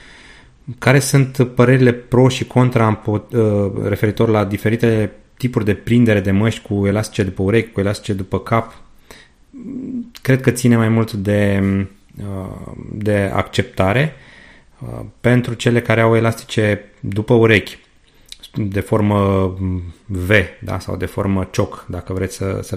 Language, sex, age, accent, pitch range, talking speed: Romanian, male, 30-49, native, 100-120 Hz, 125 wpm